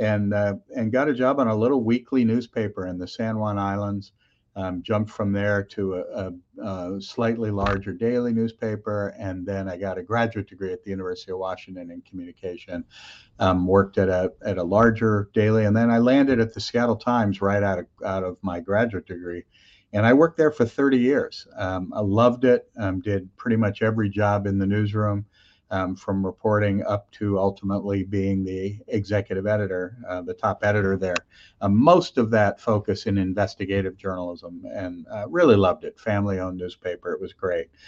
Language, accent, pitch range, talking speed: English, American, 95-115 Hz, 190 wpm